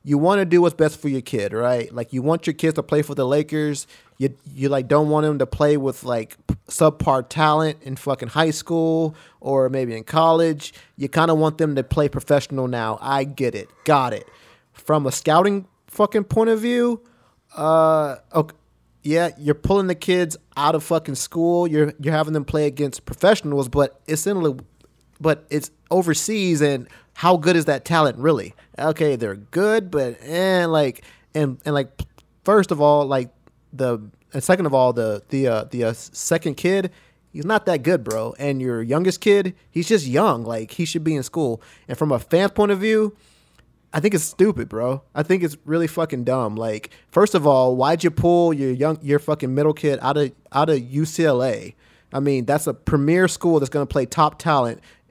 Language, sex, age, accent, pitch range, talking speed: English, male, 20-39, American, 135-165 Hz, 195 wpm